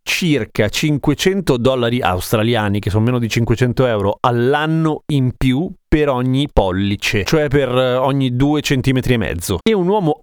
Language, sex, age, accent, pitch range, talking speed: Italian, male, 30-49, native, 115-150 Hz, 155 wpm